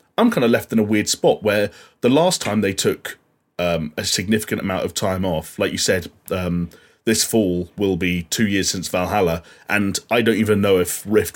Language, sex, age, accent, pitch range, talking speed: English, male, 30-49, British, 100-115 Hz, 210 wpm